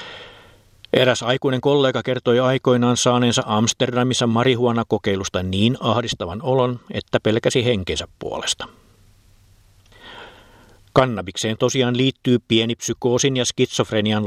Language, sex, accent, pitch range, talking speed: Finnish, male, native, 105-125 Hz, 95 wpm